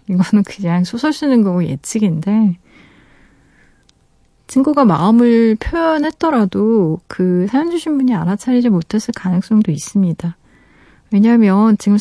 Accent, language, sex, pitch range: native, Korean, female, 185-240 Hz